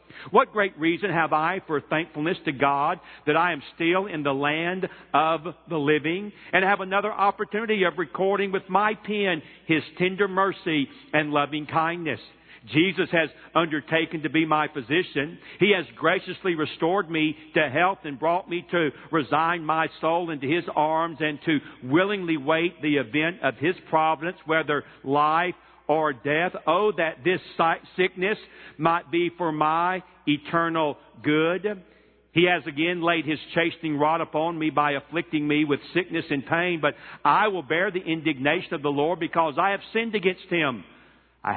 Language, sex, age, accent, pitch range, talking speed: English, male, 50-69, American, 150-175 Hz, 165 wpm